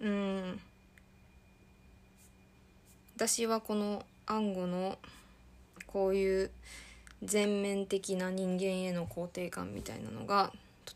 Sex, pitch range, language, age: female, 175-220 Hz, Japanese, 20-39